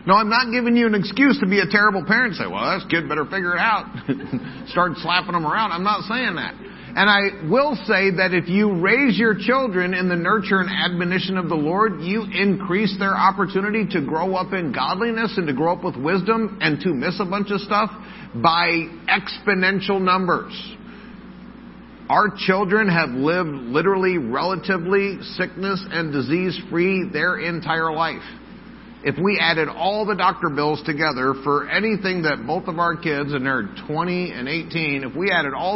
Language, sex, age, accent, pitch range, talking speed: English, male, 50-69, American, 160-205 Hz, 180 wpm